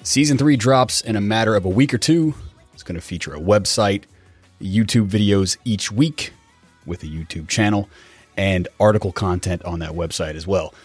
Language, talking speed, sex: English, 185 wpm, male